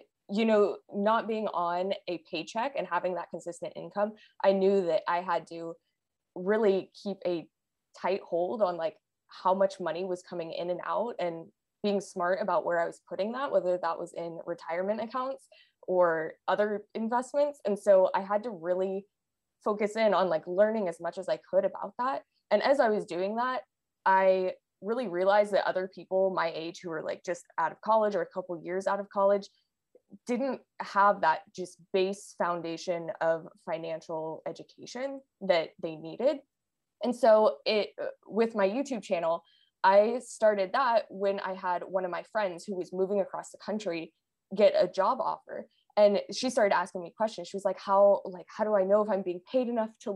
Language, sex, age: English, female, 20-39